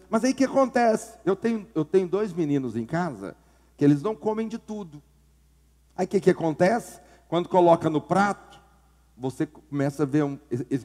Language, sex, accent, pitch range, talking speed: Portuguese, male, Brazilian, 140-230 Hz, 190 wpm